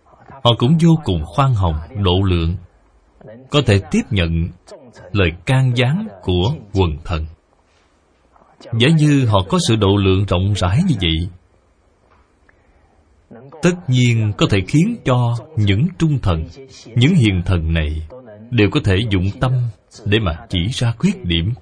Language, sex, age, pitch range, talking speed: Vietnamese, male, 20-39, 90-130 Hz, 145 wpm